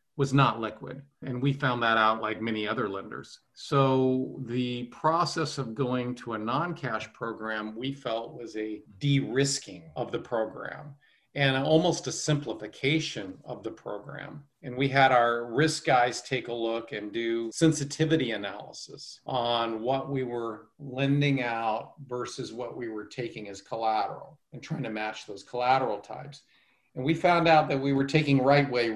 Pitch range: 115-140 Hz